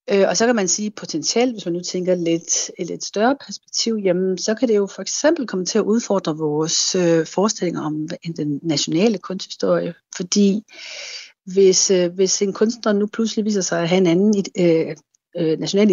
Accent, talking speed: native, 175 wpm